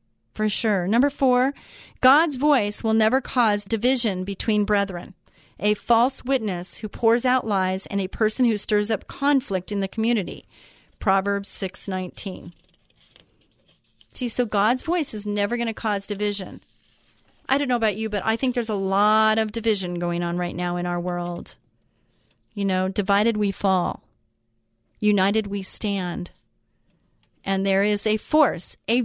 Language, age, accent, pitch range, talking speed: English, 40-59, American, 200-265 Hz, 155 wpm